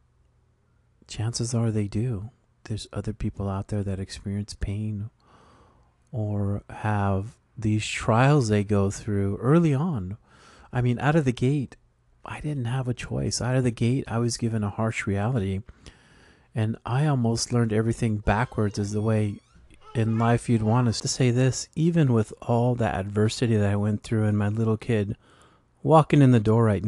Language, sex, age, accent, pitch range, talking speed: English, male, 40-59, American, 105-120 Hz, 170 wpm